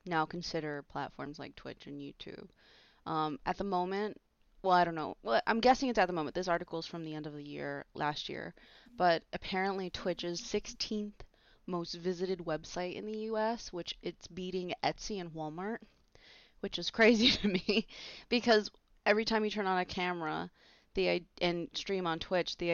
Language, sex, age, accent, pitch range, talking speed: English, female, 20-39, American, 160-190 Hz, 185 wpm